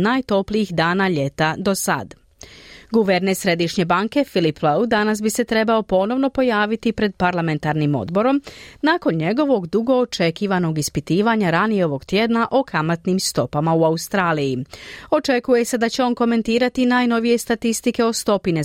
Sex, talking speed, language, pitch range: female, 135 wpm, Croatian, 175-235 Hz